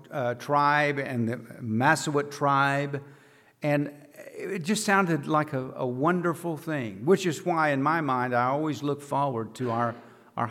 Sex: male